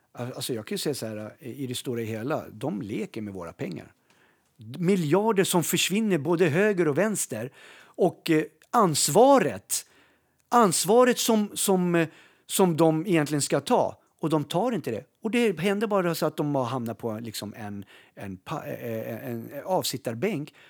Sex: male